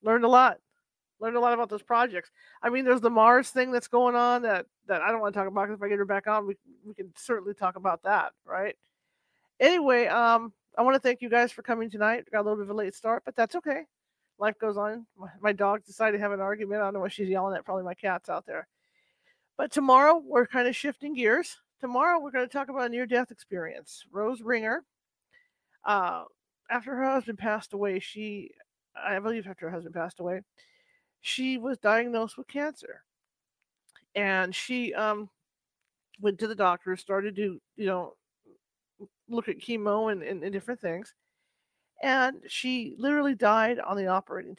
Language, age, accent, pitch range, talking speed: English, 40-59, American, 200-250 Hz, 200 wpm